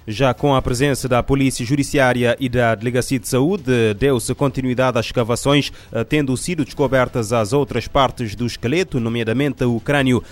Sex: male